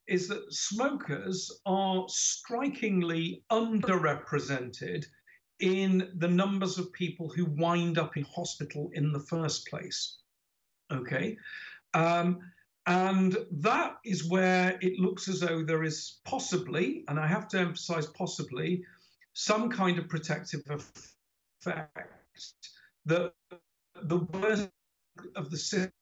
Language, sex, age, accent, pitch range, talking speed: English, male, 50-69, British, 155-185 Hz, 115 wpm